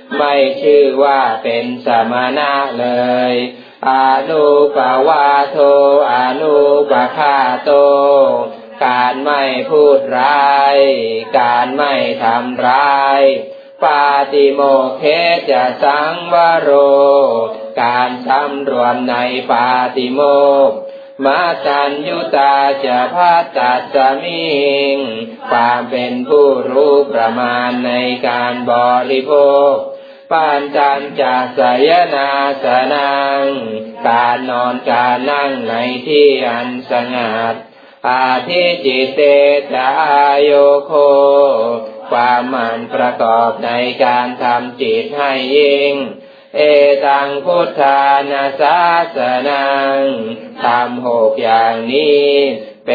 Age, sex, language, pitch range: 20-39, male, Thai, 125-145 Hz